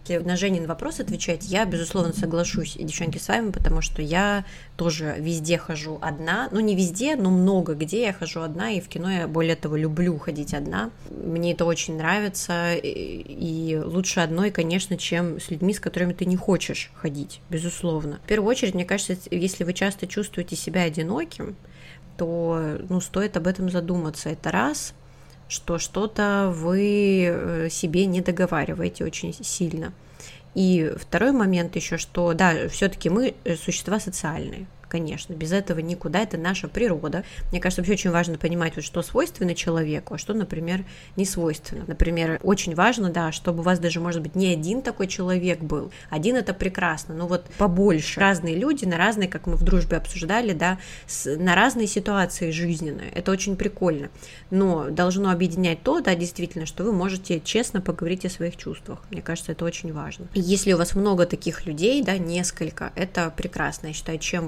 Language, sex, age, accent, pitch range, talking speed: Russian, female, 20-39, native, 165-190 Hz, 170 wpm